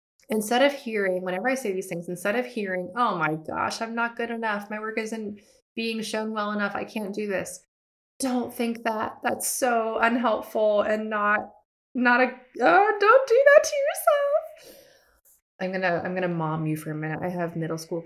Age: 20-39